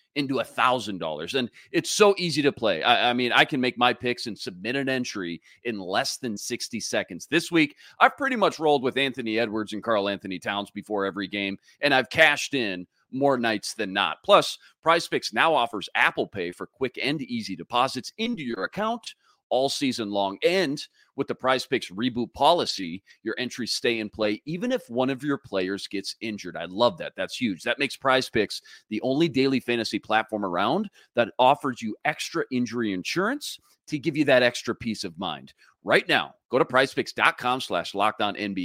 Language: English